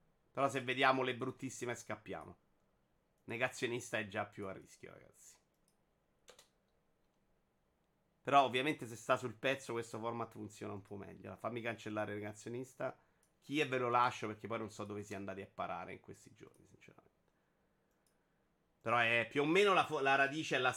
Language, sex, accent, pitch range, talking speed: Italian, male, native, 110-150 Hz, 170 wpm